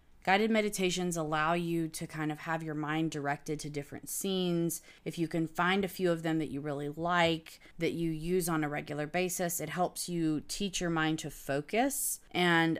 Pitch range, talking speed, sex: 155-190 Hz, 195 wpm, female